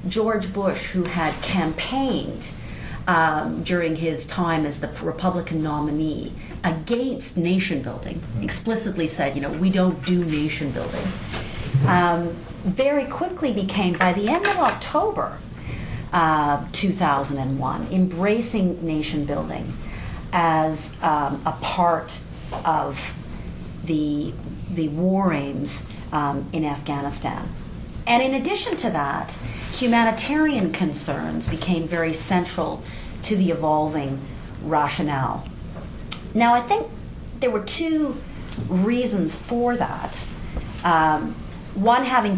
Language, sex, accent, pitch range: English, female, American, 150-190 Hz